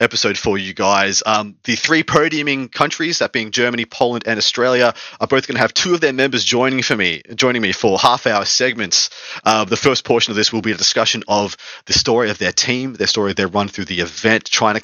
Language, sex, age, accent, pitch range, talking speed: English, male, 30-49, Australian, 110-135 Hz, 240 wpm